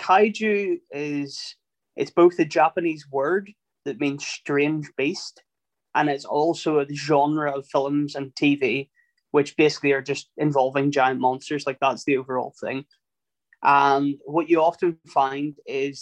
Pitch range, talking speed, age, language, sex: 135-155 Hz, 140 wpm, 20-39, English, male